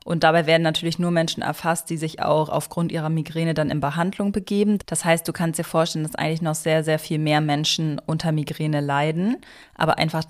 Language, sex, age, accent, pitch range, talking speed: German, female, 20-39, German, 160-185 Hz, 210 wpm